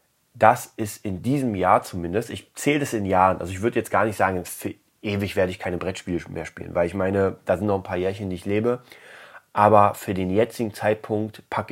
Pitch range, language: 95-105 Hz, German